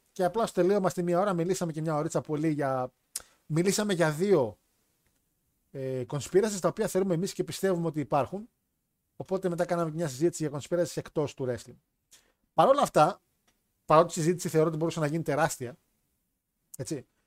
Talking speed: 170 wpm